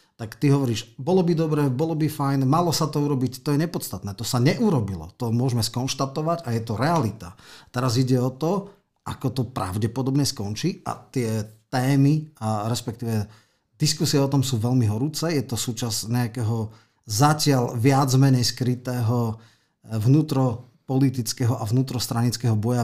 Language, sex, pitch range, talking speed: Slovak, male, 110-140 Hz, 150 wpm